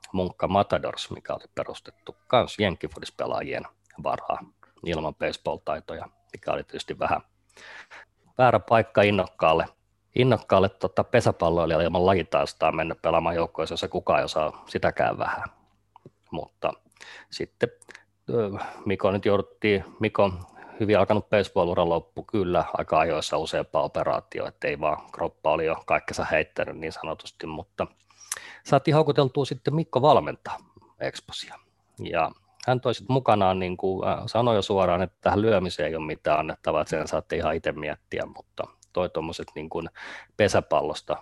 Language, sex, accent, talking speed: Finnish, male, native, 130 wpm